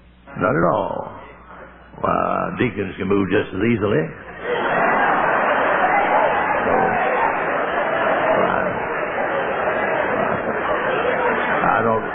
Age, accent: 60-79, American